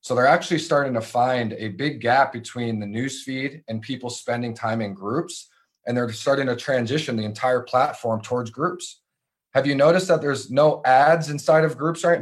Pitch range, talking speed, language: 110-135 Hz, 190 wpm, English